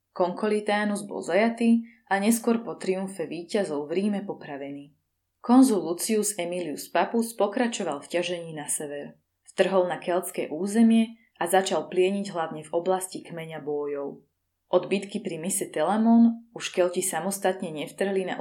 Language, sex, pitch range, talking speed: Slovak, female, 160-205 Hz, 135 wpm